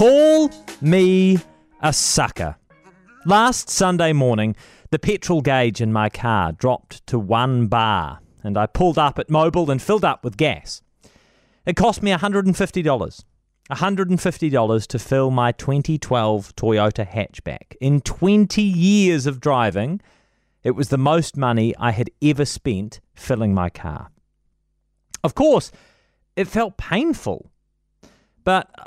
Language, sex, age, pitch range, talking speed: English, male, 30-49, 110-180 Hz, 130 wpm